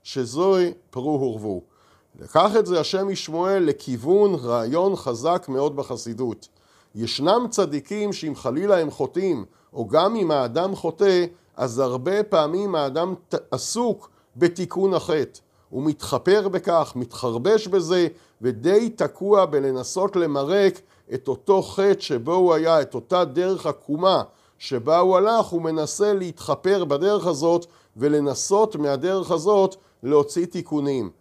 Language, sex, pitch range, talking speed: Hebrew, male, 140-190 Hz, 120 wpm